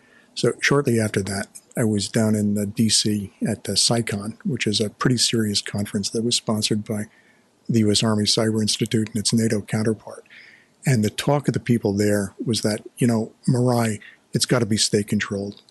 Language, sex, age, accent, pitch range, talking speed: English, male, 50-69, American, 105-115 Hz, 185 wpm